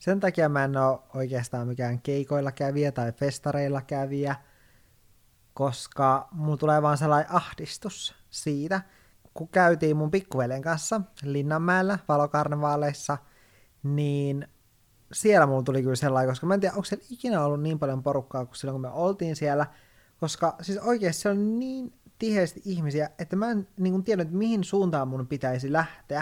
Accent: native